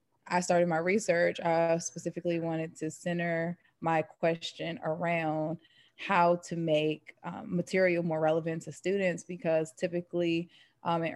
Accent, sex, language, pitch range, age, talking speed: American, female, English, 160-185 Hz, 20-39, 140 wpm